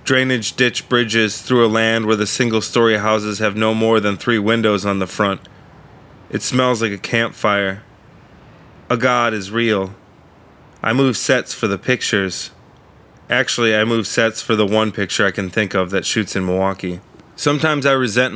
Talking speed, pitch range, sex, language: 175 wpm, 100-120 Hz, male, English